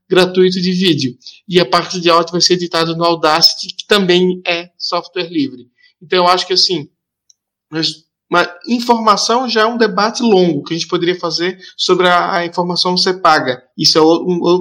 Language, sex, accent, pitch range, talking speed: Portuguese, male, Brazilian, 170-200 Hz, 180 wpm